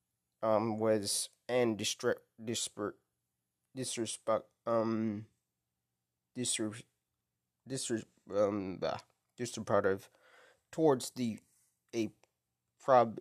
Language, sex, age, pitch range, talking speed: English, male, 20-39, 110-160 Hz, 70 wpm